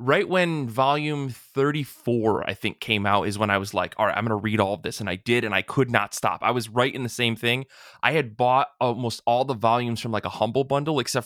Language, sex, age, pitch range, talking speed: English, male, 20-39, 110-140 Hz, 265 wpm